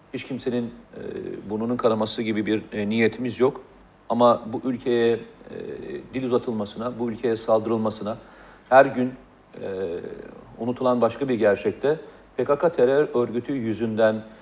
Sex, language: male, Turkish